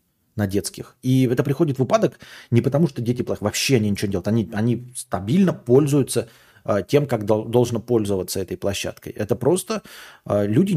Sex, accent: male, native